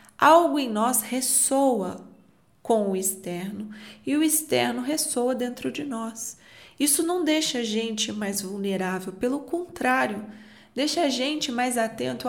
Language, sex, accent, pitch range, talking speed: Portuguese, female, Brazilian, 200-270 Hz, 135 wpm